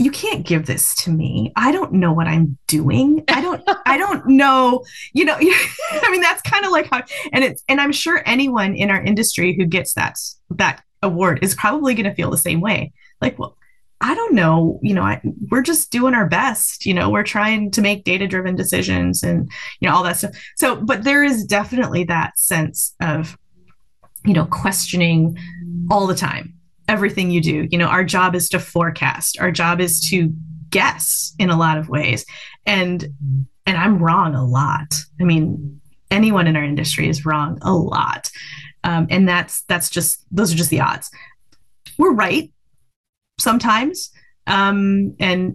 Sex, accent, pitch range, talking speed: female, American, 160-215 Hz, 180 wpm